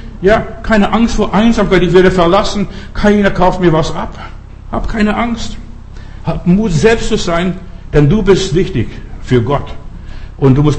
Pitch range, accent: 130-180 Hz, German